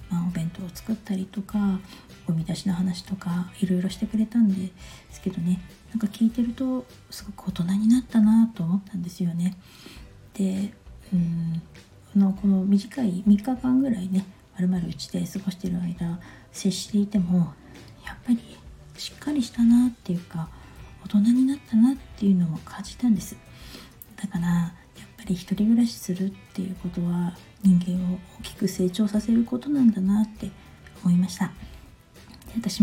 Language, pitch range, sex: Japanese, 180-215 Hz, female